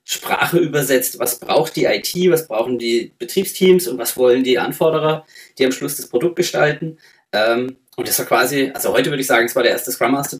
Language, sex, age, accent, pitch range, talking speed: German, male, 20-39, German, 125-165 Hz, 215 wpm